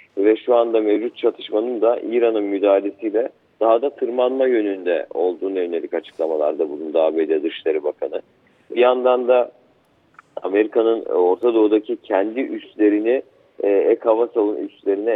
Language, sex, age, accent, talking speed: Turkish, male, 50-69, native, 115 wpm